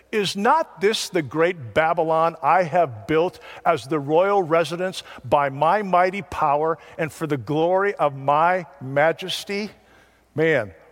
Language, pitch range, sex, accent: English, 140-200 Hz, male, American